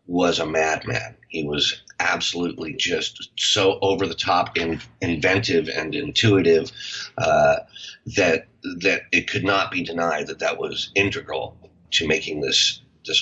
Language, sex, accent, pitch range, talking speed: English, male, American, 80-100 Hz, 145 wpm